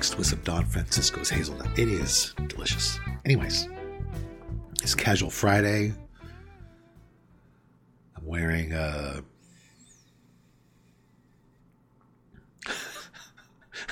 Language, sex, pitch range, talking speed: English, male, 65-90 Hz, 70 wpm